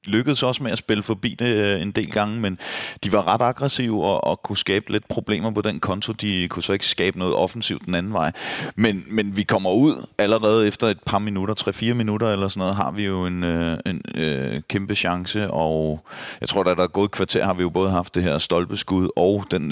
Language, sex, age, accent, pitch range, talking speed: Danish, male, 30-49, native, 90-110 Hz, 230 wpm